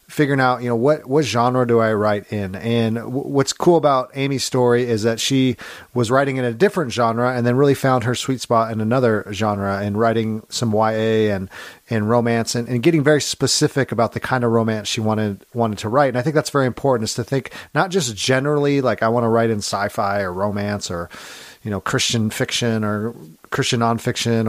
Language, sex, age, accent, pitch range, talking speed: English, male, 40-59, American, 110-135 Hz, 215 wpm